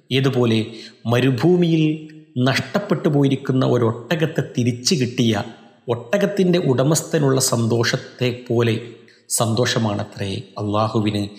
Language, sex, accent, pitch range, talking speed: Malayalam, male, native, 110-135 Hz, 70 wpm